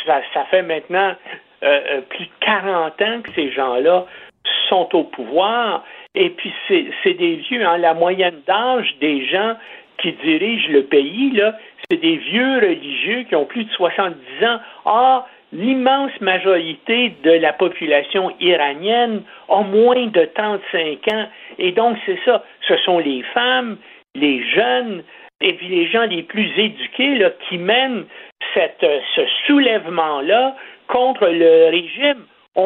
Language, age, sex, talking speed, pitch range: French, 60-79, male, 145 wpm, 170-260 Hz